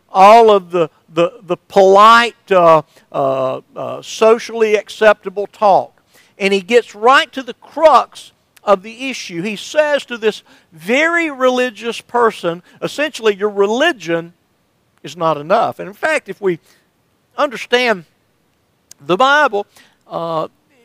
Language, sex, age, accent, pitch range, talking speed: English, male, 50-69, American, 175-230 Hz, 125 wpm